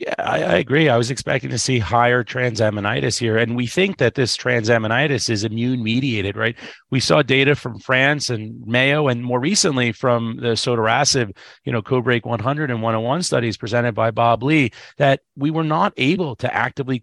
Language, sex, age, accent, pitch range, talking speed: English, male, 30-49, American, 120-145 Hz, 185 wpm